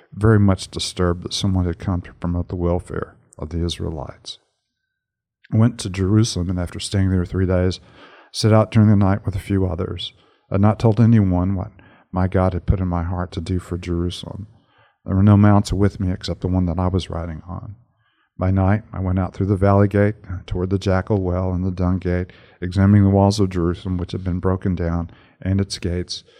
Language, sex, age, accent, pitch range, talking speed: English, male, 50-69, American, 90-100 Hz, 215 wpm